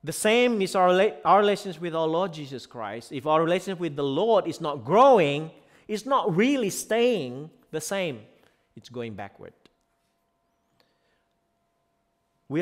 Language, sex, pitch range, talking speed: English, male, 115-190 Hz, 145 wpm